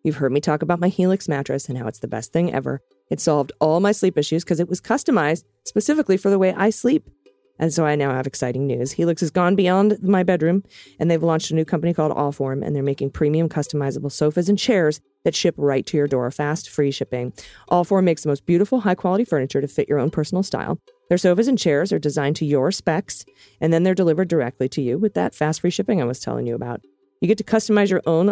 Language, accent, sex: English, American, female